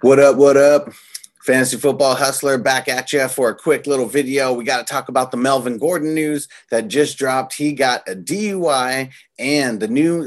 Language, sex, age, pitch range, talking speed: English, male, 30-49, 125-150 Hz, 200 wpm